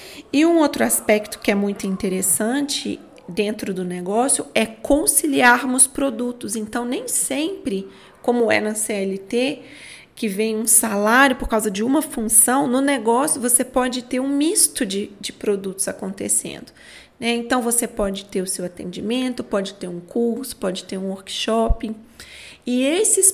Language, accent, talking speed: Portuguese, Brazilian, 150 wpm